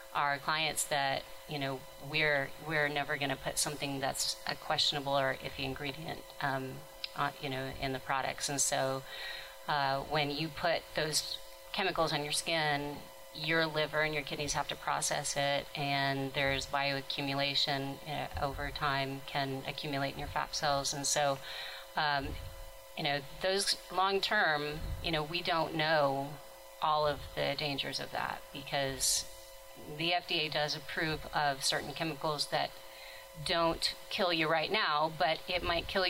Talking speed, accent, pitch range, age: 155 wpm, American, 140-160 Hz, 30-49